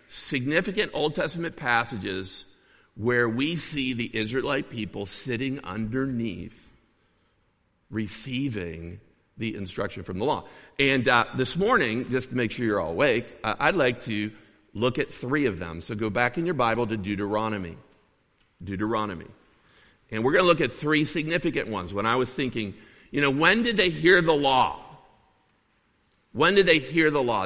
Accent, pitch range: American, 105-140 Hz